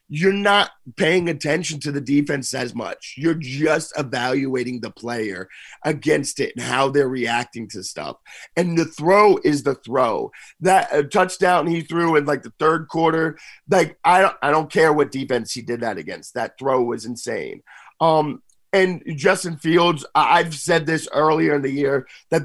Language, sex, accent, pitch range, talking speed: English, male, American, 140-175 Hz, 175 wpm